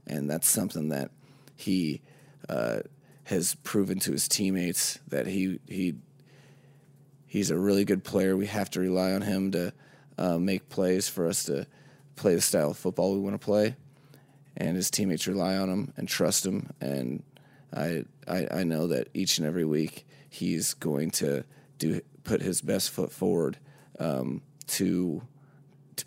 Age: 30-49